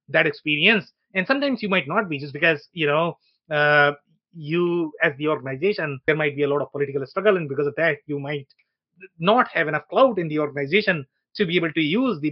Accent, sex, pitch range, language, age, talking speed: Indian, male, 145-190 Hz, English, 30-49, 215 wpm